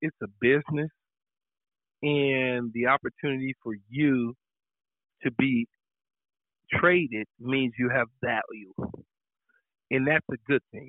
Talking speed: 110 wpm